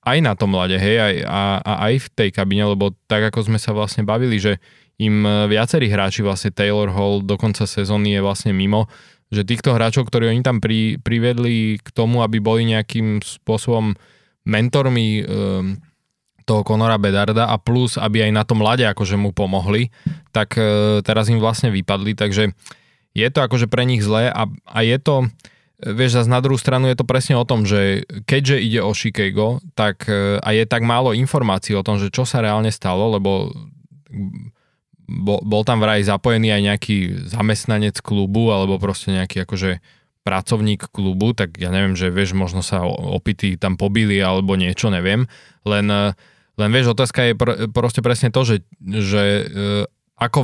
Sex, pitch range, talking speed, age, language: male, 100-120 Hz, 170 wpm, 20-39, Slovak